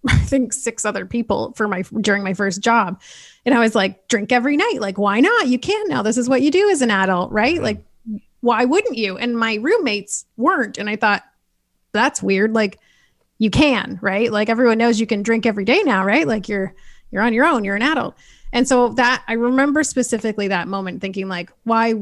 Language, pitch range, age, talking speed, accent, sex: English, 195-240 Hz, 30-49, 220 wpm, American, female